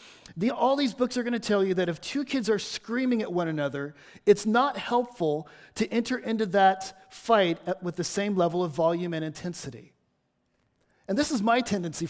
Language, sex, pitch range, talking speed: English, male, 175-240 Hz, 190 wpm